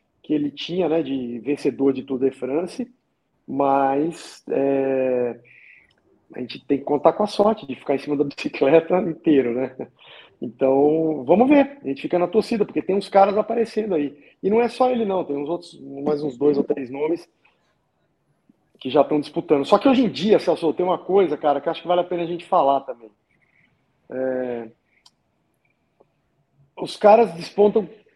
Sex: male